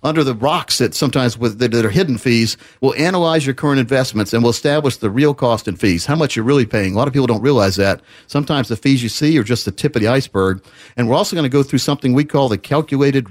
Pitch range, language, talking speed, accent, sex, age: 115-150 Hz, English, 275 wpm, American, male, 50-69